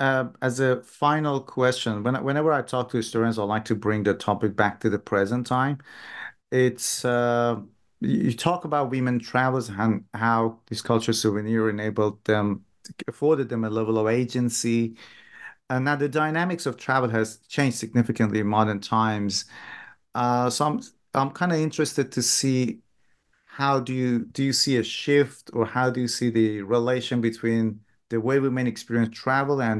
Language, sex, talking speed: English, male, 170 wpm